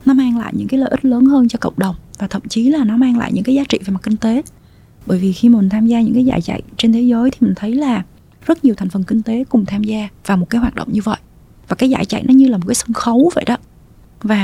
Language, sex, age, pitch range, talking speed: Vietnamese, female, 20-39, 205-255 Hz, 310 wpm